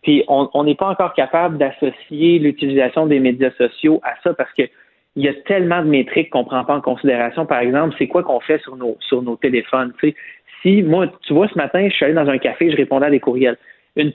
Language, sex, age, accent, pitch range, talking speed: French, male, 30-49, Canadian, 130-165 Hz, 250 wpm